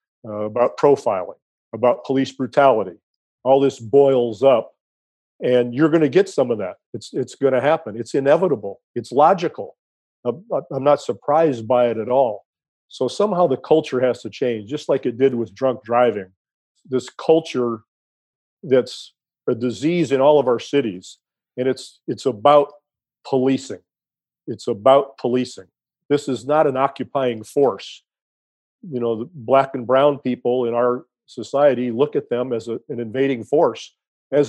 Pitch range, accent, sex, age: 120-140 Hz, American, male, 50-69